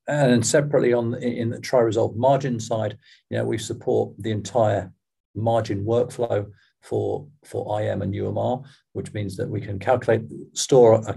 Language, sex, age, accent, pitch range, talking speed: English, male, 40-59, British, 100-125 Hz, 155 wpm